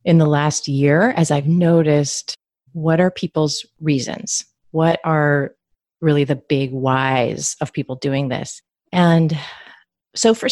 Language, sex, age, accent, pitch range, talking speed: English, female, 30-49, American, 140-165 Hz, 135 wpm